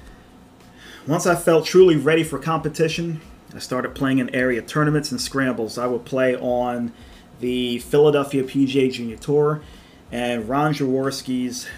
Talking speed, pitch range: 140 wpm, 125-155 Hz